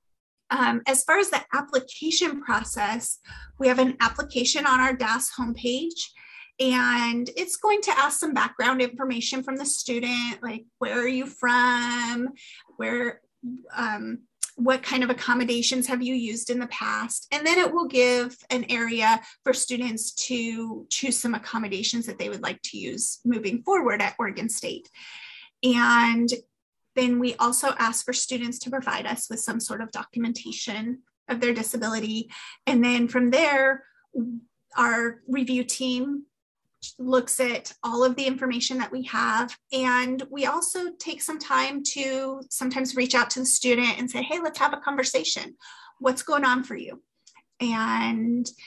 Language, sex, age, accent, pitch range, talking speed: English, female, 30-49, American, 235-265 Hz, 155 wpm